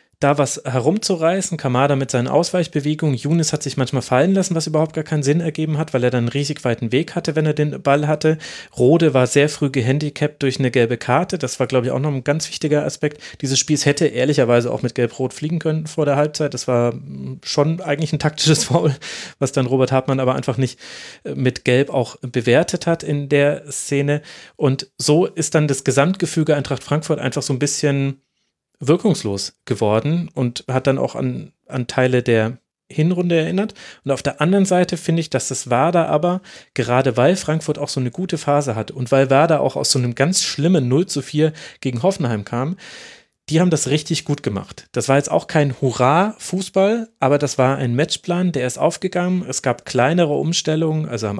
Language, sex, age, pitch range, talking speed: German, male, 30-49, 130-155 Hz, 200 wpm